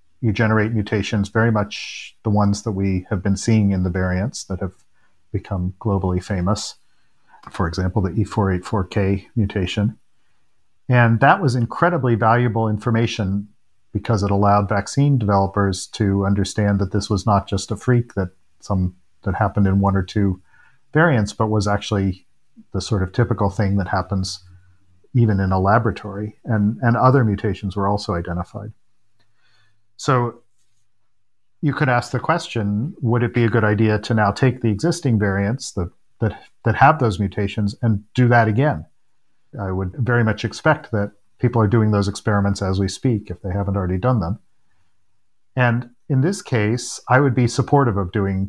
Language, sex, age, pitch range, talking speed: English, male, 40-59, 100-115 Hz, 165 wpm